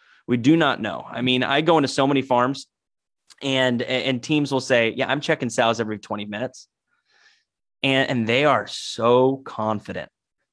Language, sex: Chinese, male